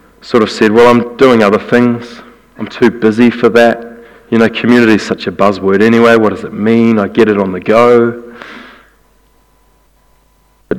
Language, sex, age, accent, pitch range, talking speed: English, male, 30-49, New Zealand, 100-115 Hz, 180 wpm